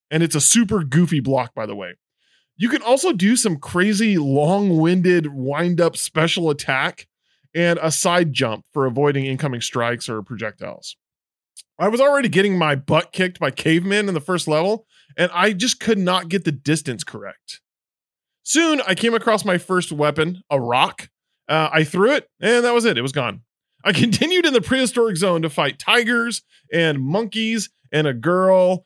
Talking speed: 180 wpm